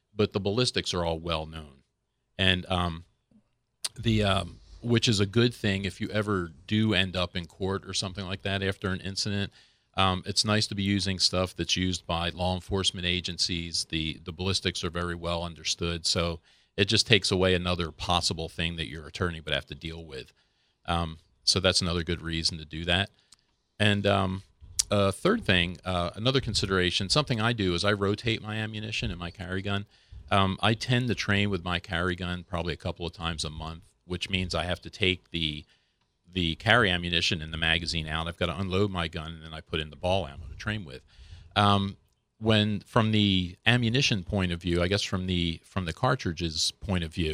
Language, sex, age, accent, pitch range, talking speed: English, male, 40-59, American, 85-100 Hz, 205 wpm